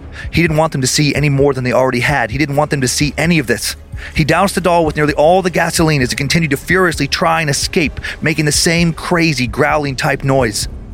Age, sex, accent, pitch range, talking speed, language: 30-49, male, American, 120-175 Hz, 240 wpm, English